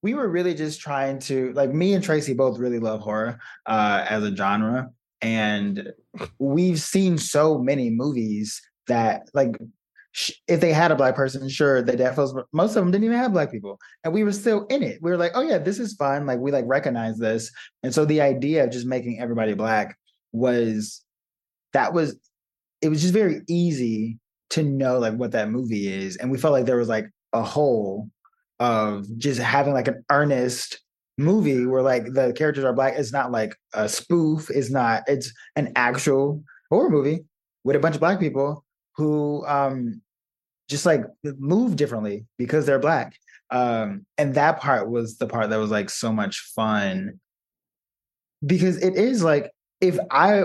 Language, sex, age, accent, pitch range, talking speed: English, male, 20-39, American, 120-160 Hz, 185 wpm